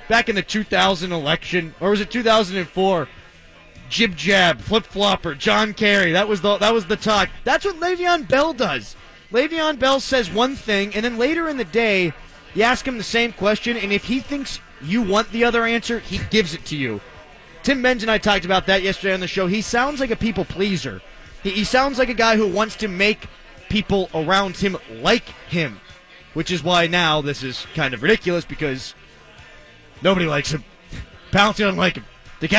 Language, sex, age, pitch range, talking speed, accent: English, male, 30-49, 180-225 Hz, 195 wpm, American